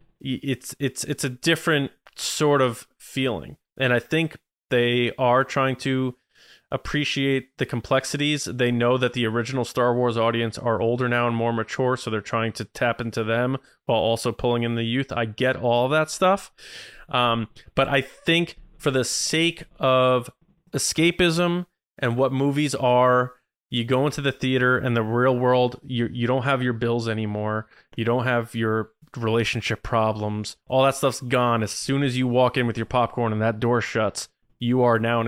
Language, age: English, 20-39